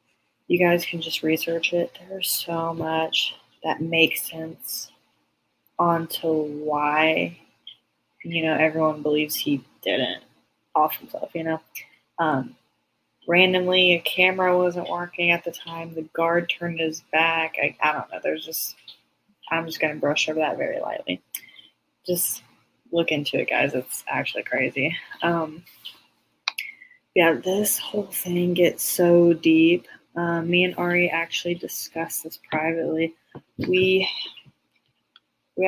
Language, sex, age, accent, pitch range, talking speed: English, female, 20-39, American, 160-175 Hz, 135 wpm